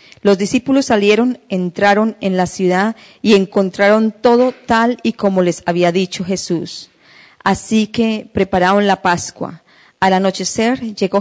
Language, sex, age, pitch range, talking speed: Spanish, female, 40-59, 180-220 Hz, 135 wpm